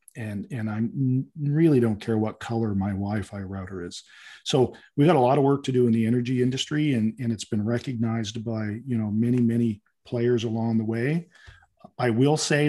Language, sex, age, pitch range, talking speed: English, male, 40-59, 105-125 Hz, 200 wpm